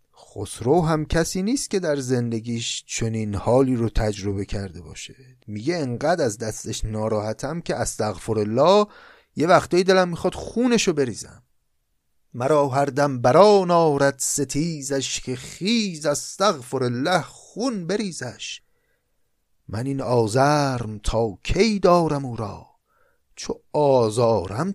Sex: male